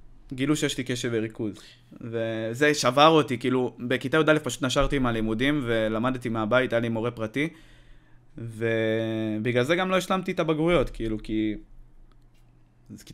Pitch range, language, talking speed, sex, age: 115-145 Hz, Hebrew, 140 wpm, male, 20-39